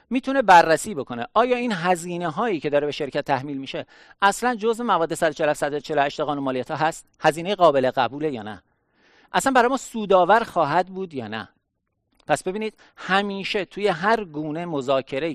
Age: 50-69